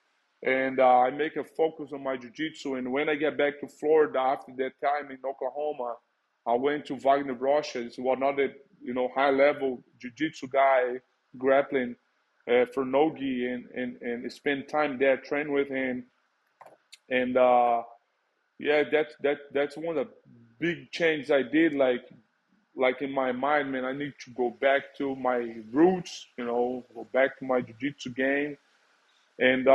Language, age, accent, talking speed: English, 20-39, Brazilian, 165 wpm